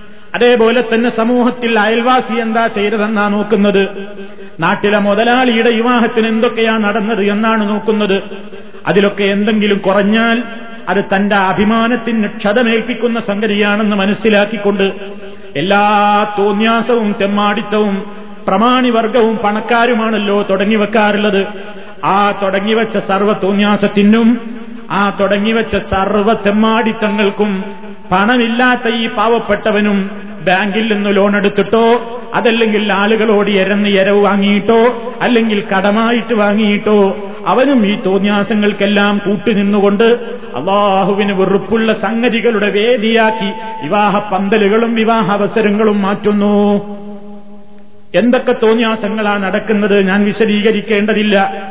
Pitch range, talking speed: 205-225 Hz, 75 wpm